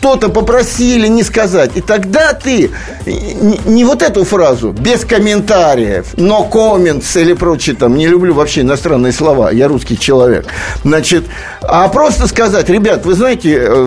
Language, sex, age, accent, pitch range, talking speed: Russian, male, 50-69, native, 180-245 Hz, 150 wpm